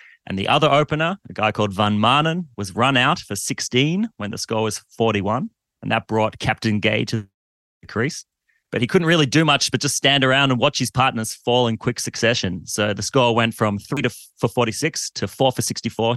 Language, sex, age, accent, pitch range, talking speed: English, male, 30-49, Australian, 110-140 Hz, 215 wpm